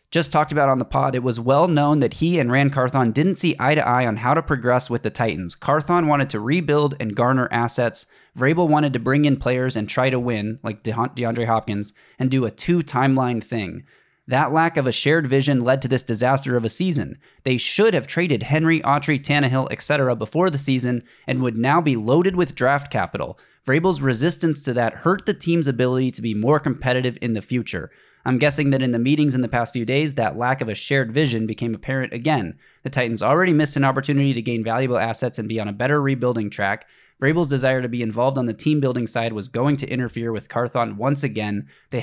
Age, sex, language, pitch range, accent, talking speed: 20-39, male, English, 115-145 Hz, American, 220 wpm